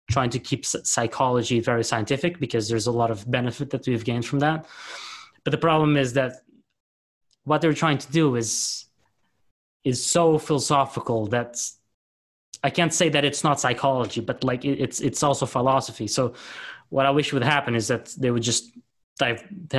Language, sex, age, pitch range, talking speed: English, male, 20-39, 115-135 Hz, 175 wpm